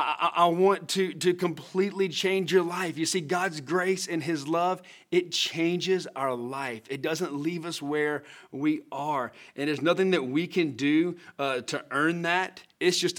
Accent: American